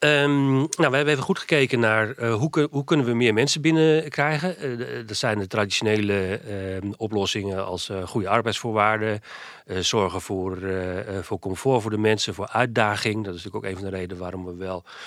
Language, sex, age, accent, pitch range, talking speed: Dutch, male, 40-59, Dutch, 95-115 Hz, 185 wpm